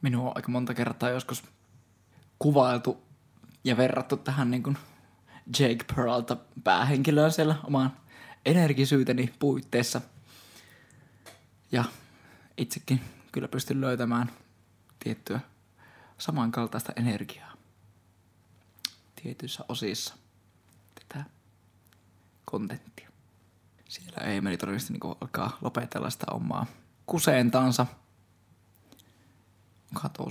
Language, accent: Finnish, native